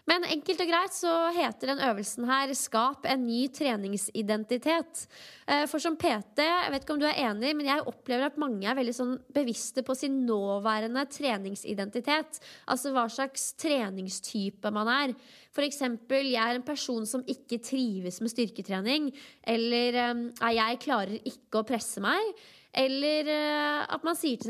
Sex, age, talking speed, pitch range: female, 20-39, 160 wpm, 230-290 Hz